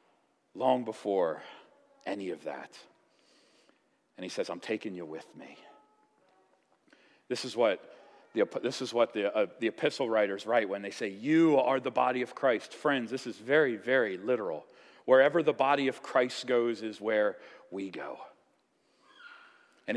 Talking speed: 155 wpm